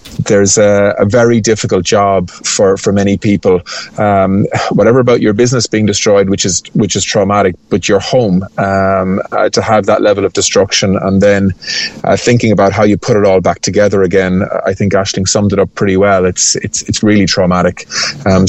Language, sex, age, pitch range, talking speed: English, male, 30-49, 100-115 Hz, 195 wpm